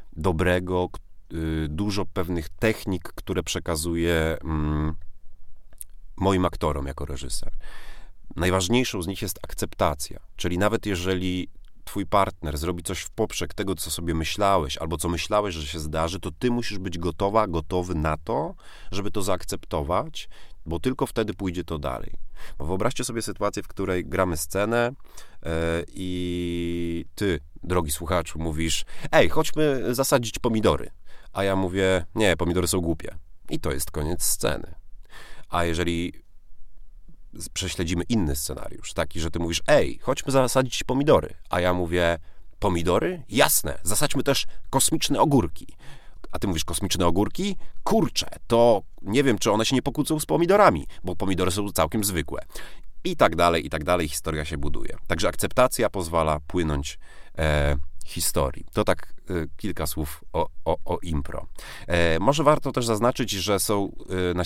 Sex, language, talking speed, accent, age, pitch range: male, Polish, 140 wpm, native, 30-49, 80-100 Hz